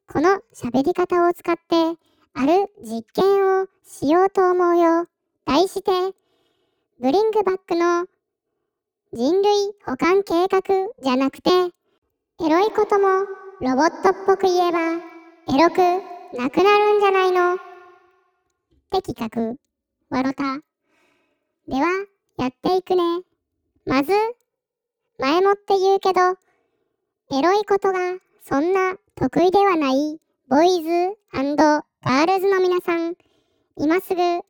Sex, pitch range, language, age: male, 335-390 Hz, Japanese, 10-29